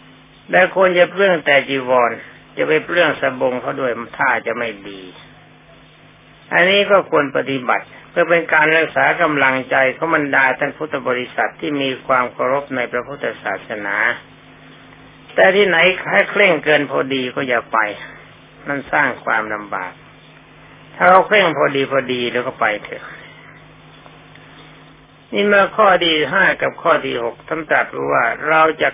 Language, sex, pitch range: Thai, male, 125-155 Hz